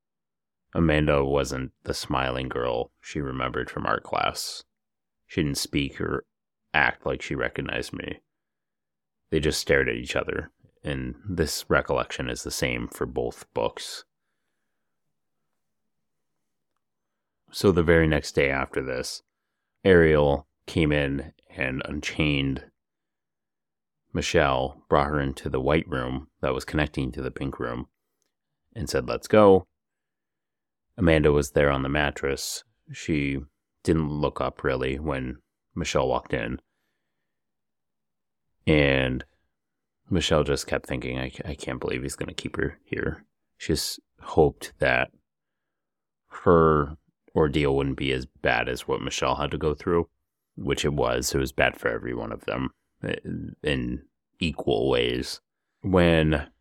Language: English